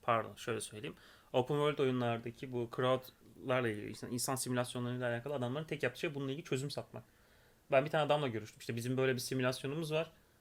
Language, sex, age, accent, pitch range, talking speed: Turkish, male, 30-49, native, 125-155 Hz, 185 wpm